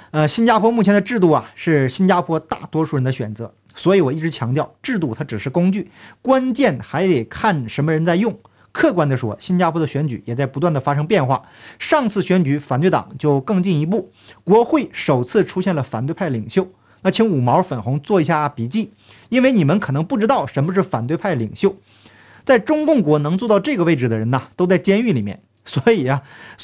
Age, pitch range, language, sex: 50-69, 145-205 Hz, Chinese, male